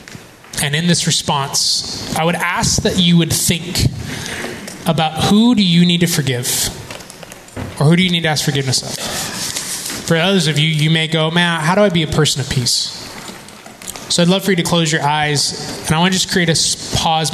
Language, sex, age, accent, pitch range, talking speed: English, male, 20-39, American, 135-165 Hz, 210 wpm